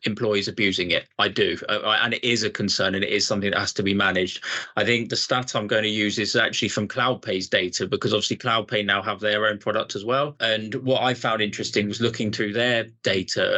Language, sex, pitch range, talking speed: English, male, 100-115 Hz, 235 wpm